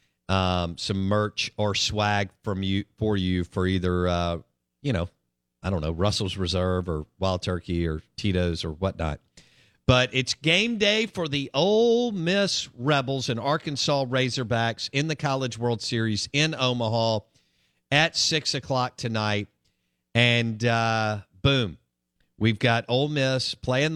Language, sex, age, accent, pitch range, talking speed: English, male, 50-69, American, 95-130 Hz, 145 wpm